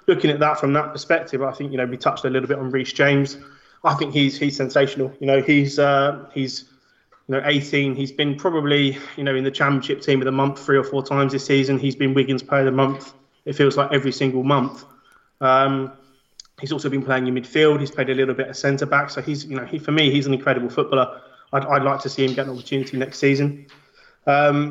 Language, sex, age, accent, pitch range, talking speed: English, male, 20-39, British, 135-145 Hz, 245 wpm